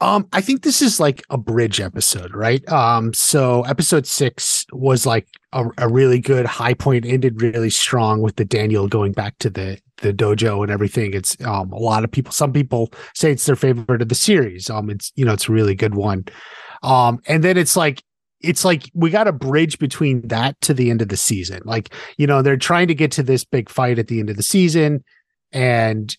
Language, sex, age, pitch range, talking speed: English, male, 30-49, 115-150 Hz, 220 wpm